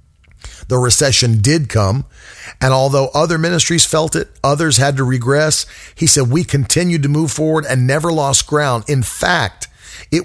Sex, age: male, 40-59